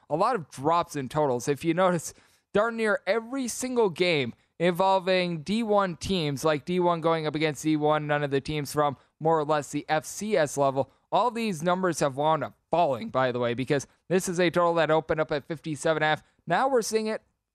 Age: 20-39